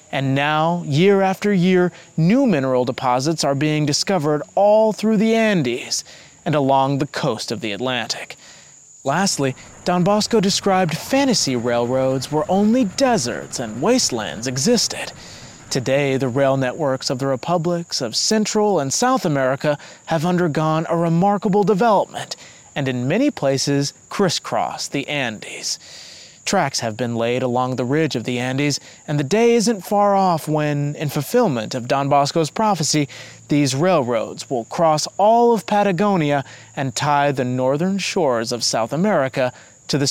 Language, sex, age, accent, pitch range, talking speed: English, male, 30-49, American, 130-185 Hz, 145 wpm